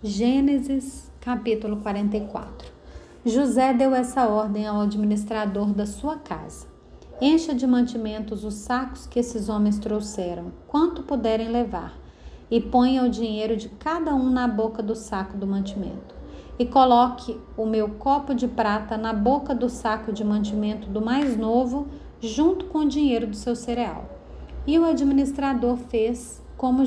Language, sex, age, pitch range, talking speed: Portuguese, female, 30-49, 210-255 Hz, 145 wpm